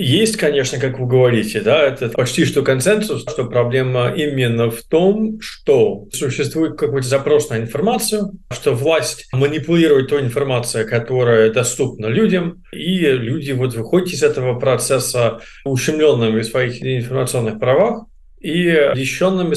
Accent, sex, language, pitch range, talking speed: native, male, Russian, 120-150 Hz, 130 wpm